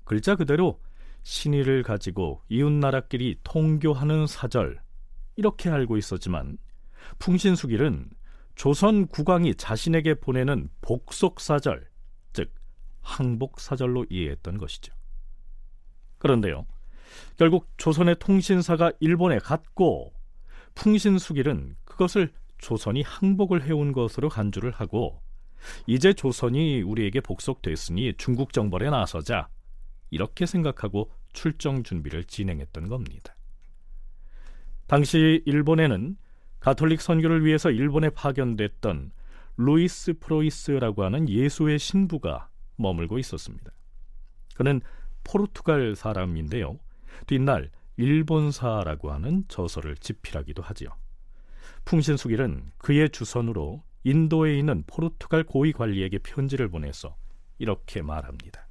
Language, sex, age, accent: Korean, male, 40-59, native